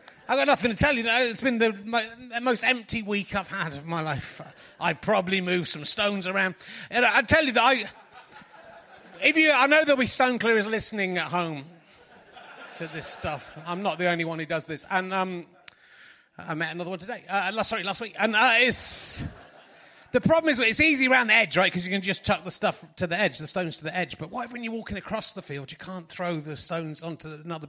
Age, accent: 30-49, British